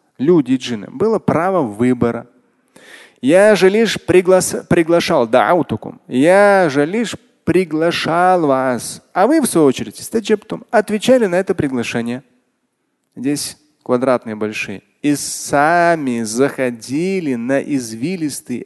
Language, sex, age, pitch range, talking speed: Russian, male, 30-49, 125-190 Hz, 100 wpm